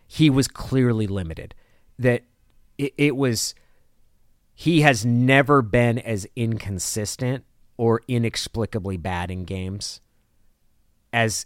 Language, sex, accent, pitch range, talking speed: English, male, American, 90-120 Hz, 105 wpm